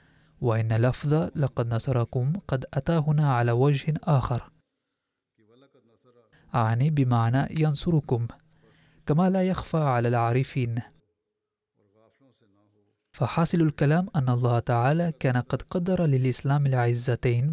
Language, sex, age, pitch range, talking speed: Arabic, male, 20-39, 120-155 Hz, 95 wpm